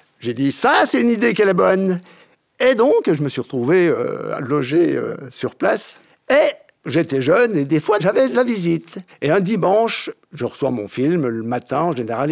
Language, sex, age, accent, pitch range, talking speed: French, male, 50-69, French, 150-225 Hz, 200 wpm